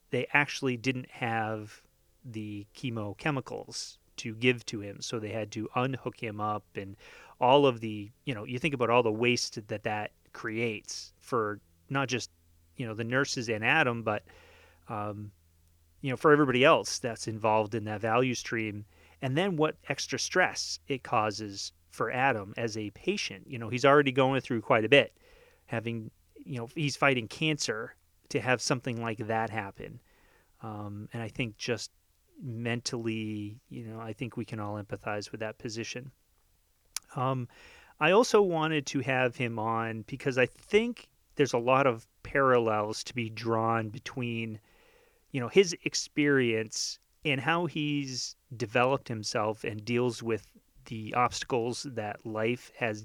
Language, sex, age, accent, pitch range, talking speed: English, male, 30-49, American, 105-130 Hz, 160 wpm